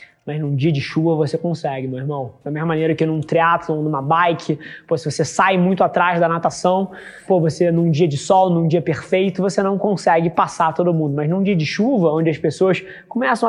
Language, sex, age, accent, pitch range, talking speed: Portuguese, male, 20-39, Brazilian, 155-185 Hz, 220 wpm